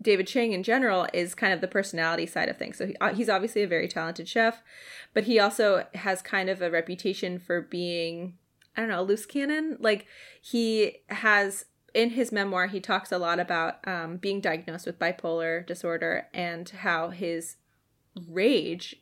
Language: English